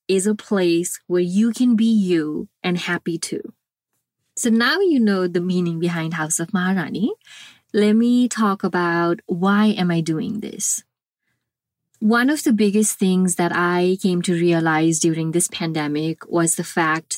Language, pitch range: English, 170-215 Hz